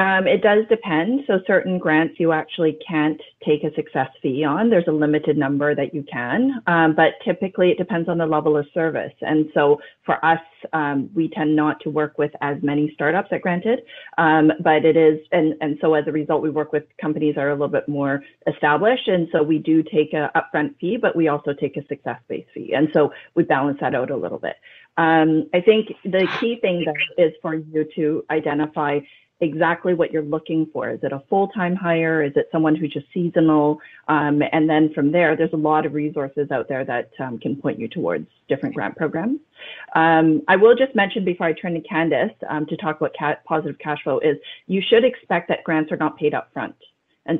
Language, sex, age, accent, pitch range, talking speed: English, female, 30-49, American, 150-170 Hz, 220 wpm